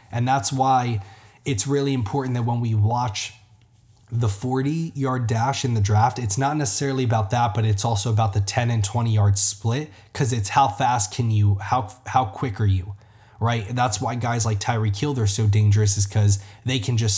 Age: 20-39